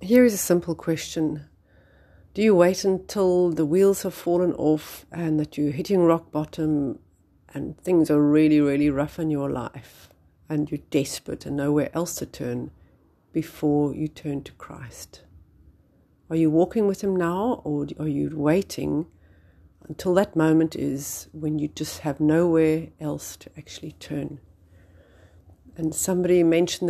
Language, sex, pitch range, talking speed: English, female, 140-165 Hz, 150 wpm